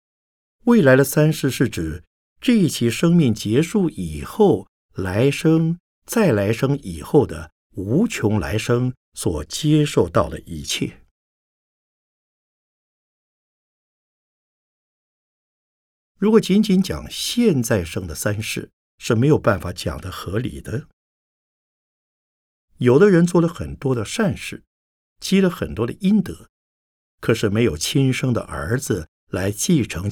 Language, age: Chinese, 60-79